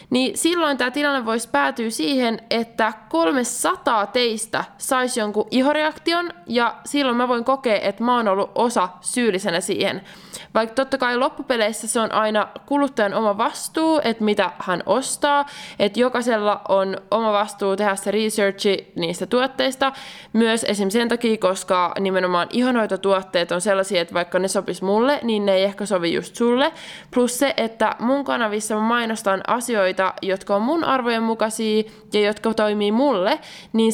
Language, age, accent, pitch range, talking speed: Finnish, 20-39, native, 195-245 Hz, 160 wpm